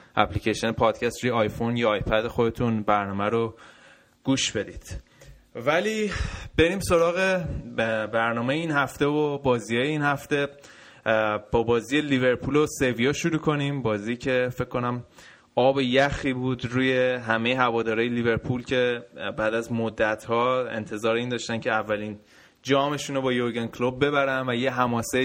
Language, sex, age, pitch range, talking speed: Persian, male, 20-39, 115-140 Hz, 135 wpm